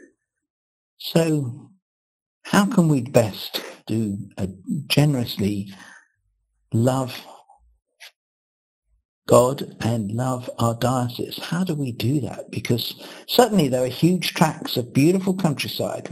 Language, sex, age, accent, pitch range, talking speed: English, male, 60-79, British, 115-155 Hz, 100 wpm